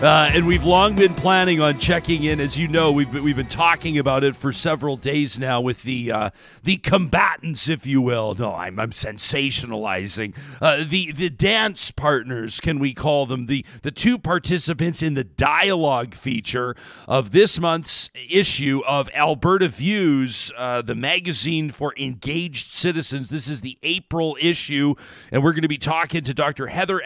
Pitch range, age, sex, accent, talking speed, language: 140-180 Hz, 40-59, male, American, 175 wpm, English